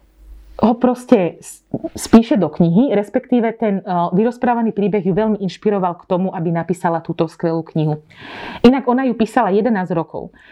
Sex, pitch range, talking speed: female, 175-210 Hz, 150 wpm